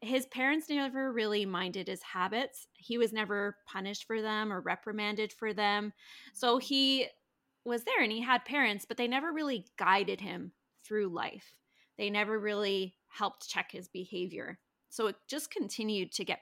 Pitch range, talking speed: 185-235 Hz, 170 wpm